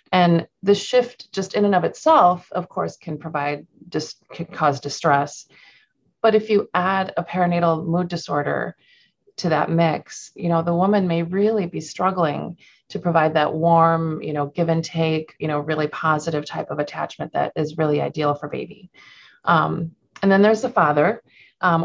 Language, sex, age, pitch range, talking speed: English, female, 30-49, 155-195 Hz, 175 wpm